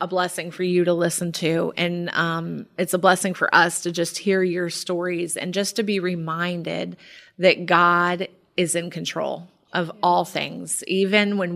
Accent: American